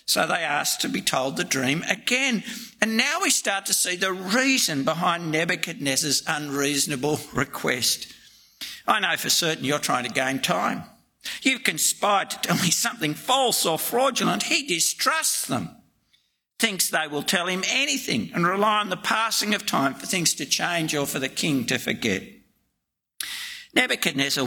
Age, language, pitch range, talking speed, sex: 60-79, English, 150-230 Hz, 160 wpm, male